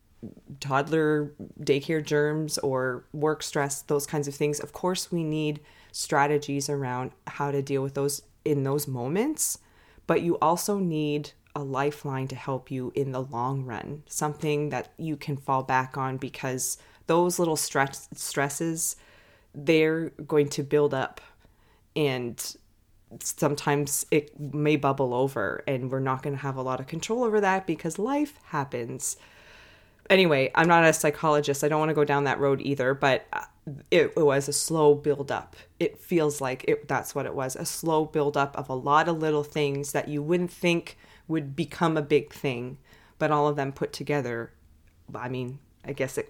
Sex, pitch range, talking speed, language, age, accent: female, 135-160 Hz, 175 wpm, English, 20-39, American